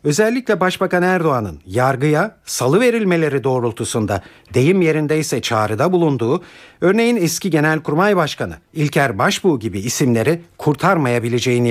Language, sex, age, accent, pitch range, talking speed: Turkish, male, 50-69, native, 130-180 Hz, 105 wpm